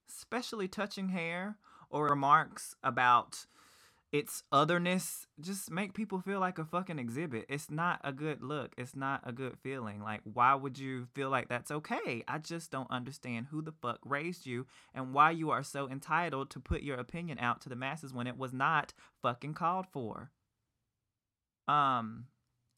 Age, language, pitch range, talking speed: 20-39, English, 135-190 Hz, 170 wpm